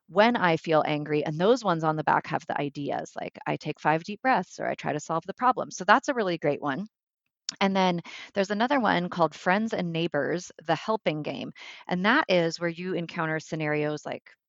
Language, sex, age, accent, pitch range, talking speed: English, female, 30-49, American, 155-195 Hz, 215 wpm